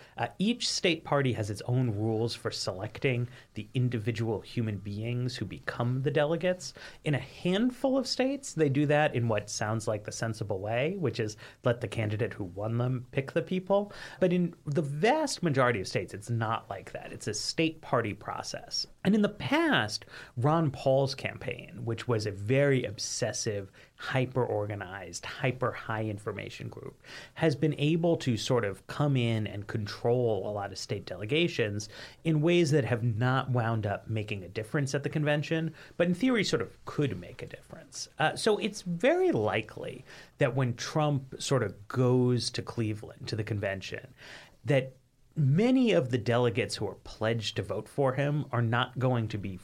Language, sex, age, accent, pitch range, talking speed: English, male, 30-49, American, 110-150 Hz, 180 wpm